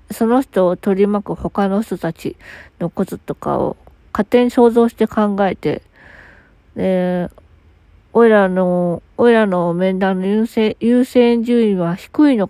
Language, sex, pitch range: Japanese, female, 165-230 Hz